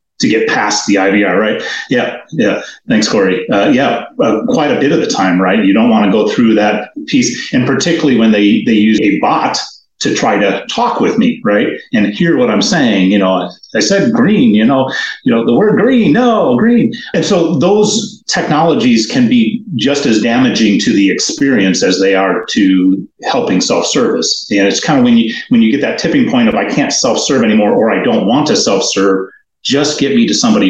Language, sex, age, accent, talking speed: English, male, 40-59, American, 215 wpm